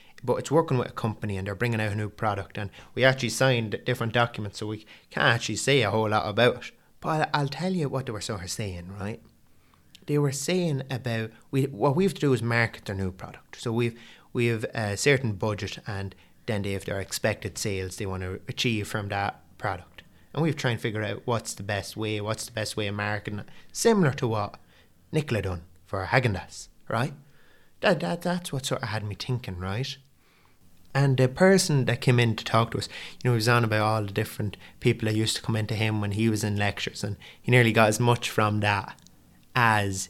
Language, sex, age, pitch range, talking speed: English, male, 20-39, 100-140 Hz, 225 wpm